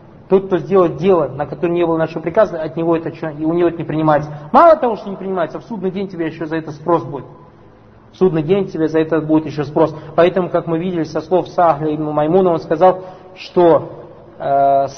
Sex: male